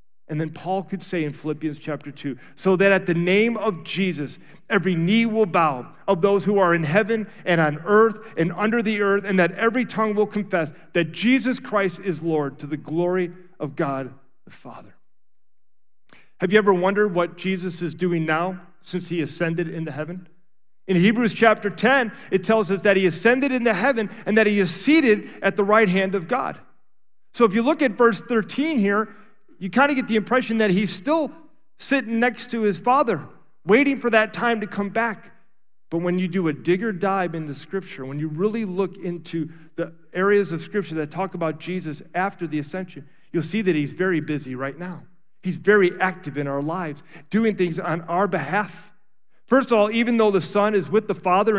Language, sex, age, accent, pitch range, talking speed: English, male, 40-59, American, 170-220 Hz, 200 wpm